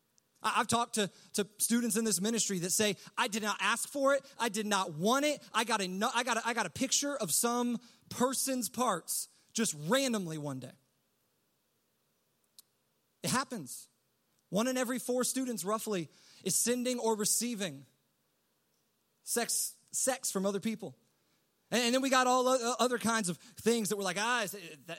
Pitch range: 200-240 Hz